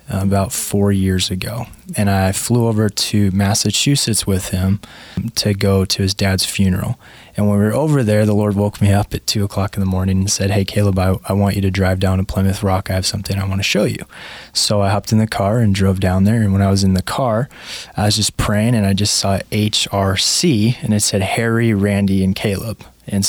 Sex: male